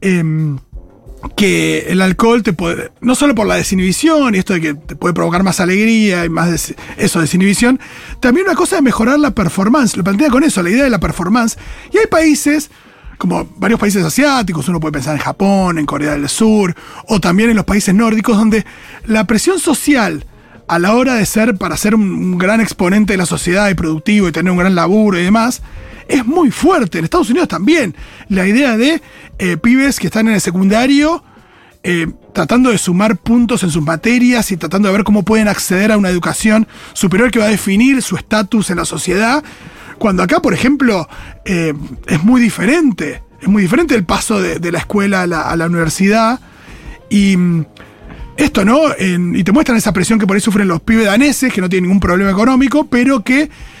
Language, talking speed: Spanish, 200 wpm